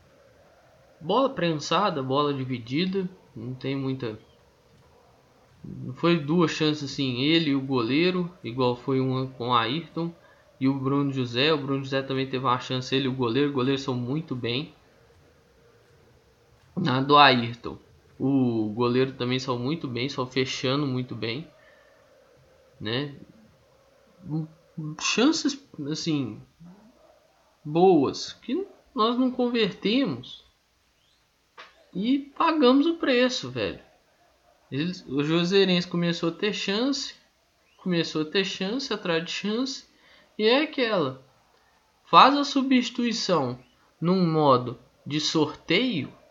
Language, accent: Portuguese, Brazilian